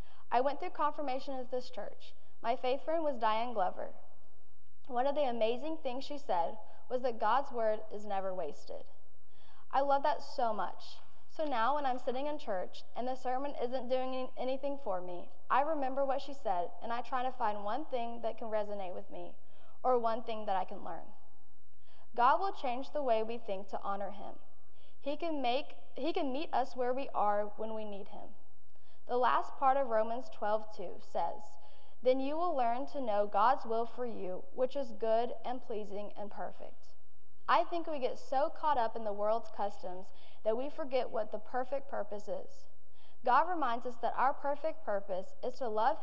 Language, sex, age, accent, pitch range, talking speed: English, female, 10-29, American, 210-275 Hz, 190 wpm